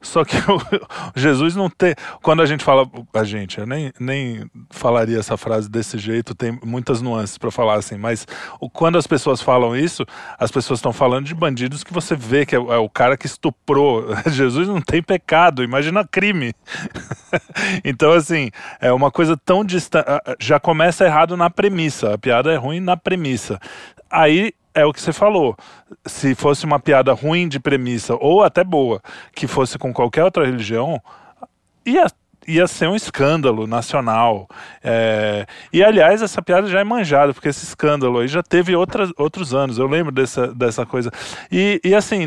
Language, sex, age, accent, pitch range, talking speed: Portuguese, male, 20-39, Brazilian, 120-170 Hz, 175 wpm